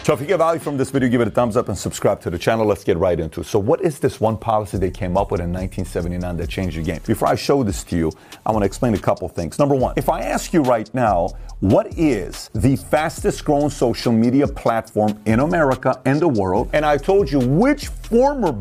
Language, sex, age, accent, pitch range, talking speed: English, male, 40-59, American, 115-170 Hz, 255 wpm